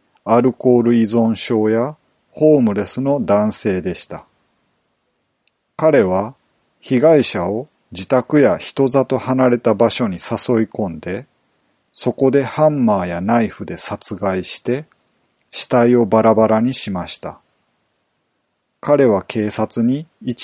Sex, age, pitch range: male, 40-59, 110-140 Hz